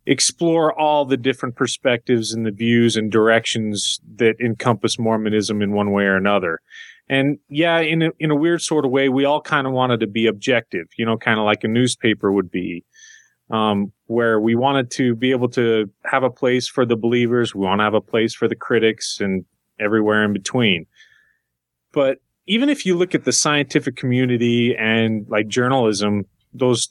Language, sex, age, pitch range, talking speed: English, male, 30-49, 110-145 Hz, 185 wpm